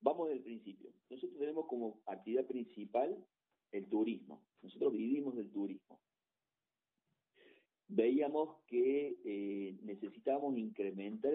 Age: 50-69